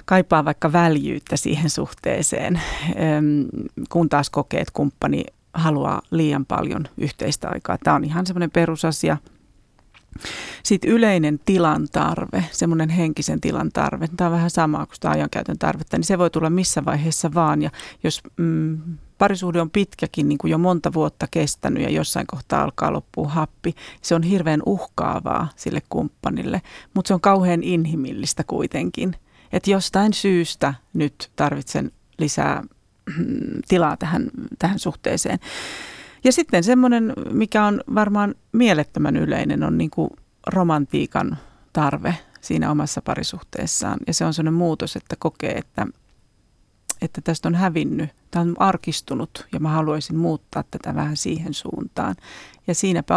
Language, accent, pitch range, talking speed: Finnish, native, 155-185 Hz, 135 wpm